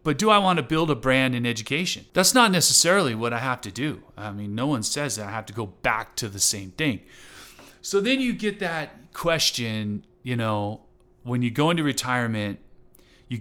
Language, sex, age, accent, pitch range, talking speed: English, male, 30-49, American, 110-150 Hz, 210 wpm